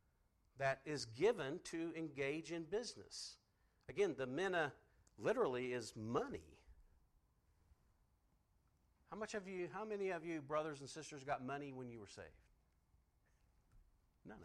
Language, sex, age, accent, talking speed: English, male, 50-69, American, 130 wpm